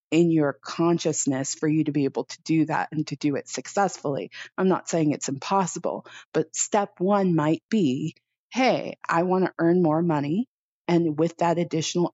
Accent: American